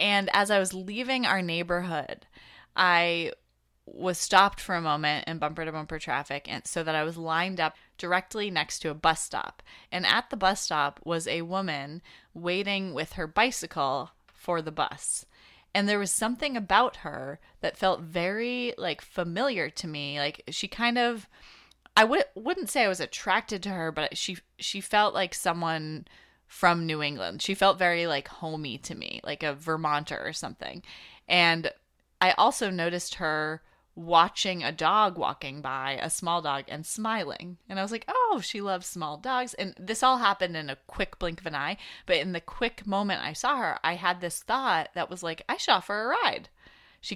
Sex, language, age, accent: female, English, 20-39, American